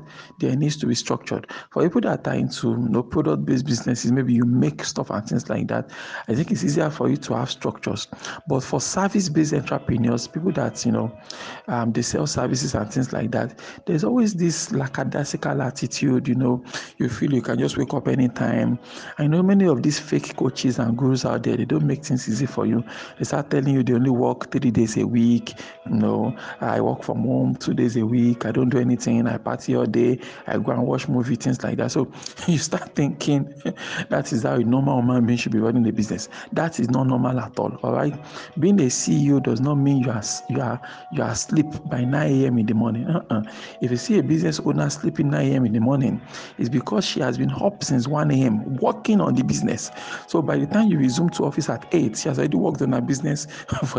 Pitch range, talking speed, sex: 120-150 Hz, 225 wpm, male